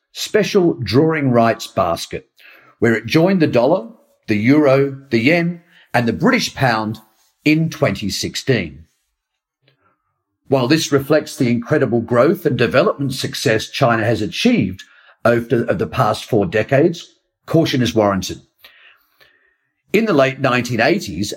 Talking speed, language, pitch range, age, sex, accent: 125 wpm, English, 115-150 Hz, 50-69, male, British